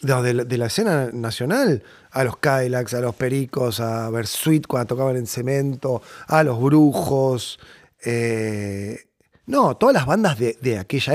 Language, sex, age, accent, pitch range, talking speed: Spanish, male, 30-49, Argentinian, 125-160 Hz, 160 wpm